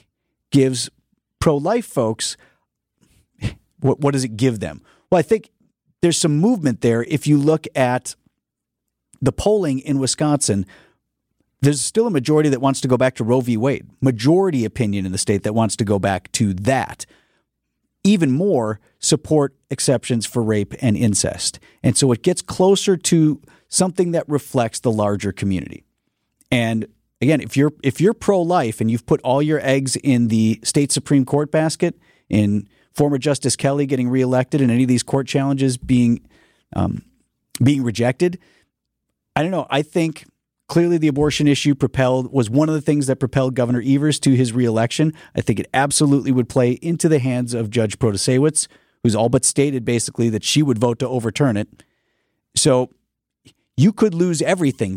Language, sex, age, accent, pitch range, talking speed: English, male, 40-59, American, 120-150 Hz, 170 wpm